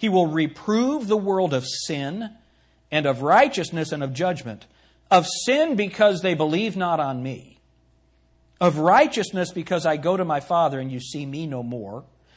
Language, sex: English, male